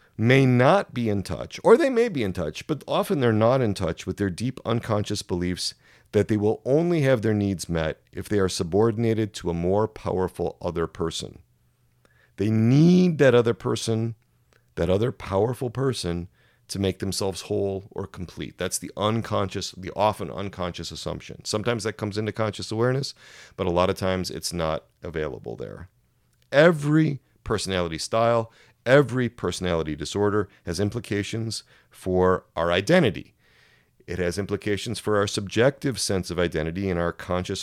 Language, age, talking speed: English, 40-59, 160 wpm